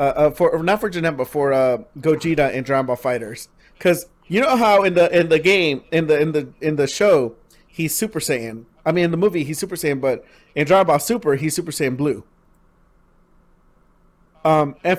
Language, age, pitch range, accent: English, 40-59, 135-175 Hz, American